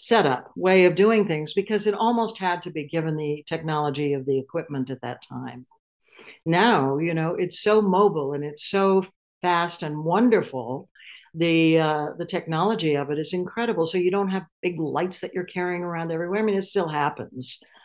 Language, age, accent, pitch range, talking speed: English, 60-79, American, 145-185 Hz, 190 wpm